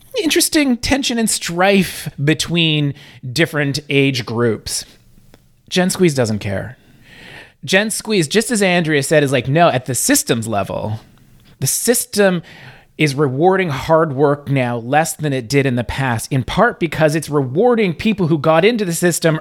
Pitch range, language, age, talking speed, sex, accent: 140-185 Hz, English, 30-49, 155 wpm, male, American